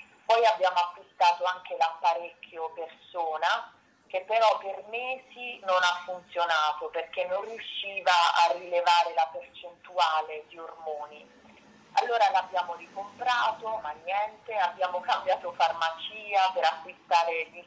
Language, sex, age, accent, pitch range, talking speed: Italian, female, 30-49, native, 165-205 Hz, 110 wpm